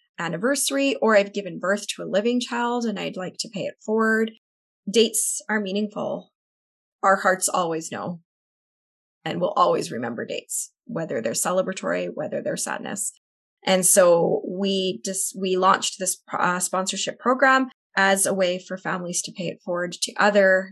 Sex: female